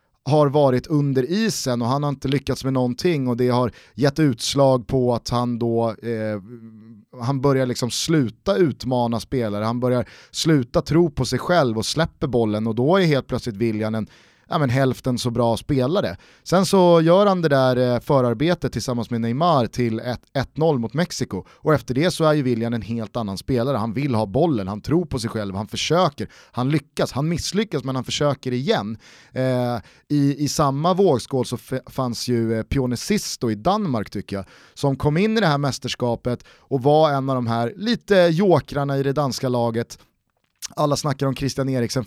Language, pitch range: Swedish, 120-150 Hz